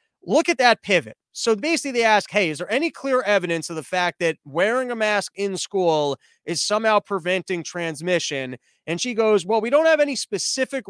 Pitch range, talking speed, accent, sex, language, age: 165-225 Hz, 200 wpm, American, male, English, 20-39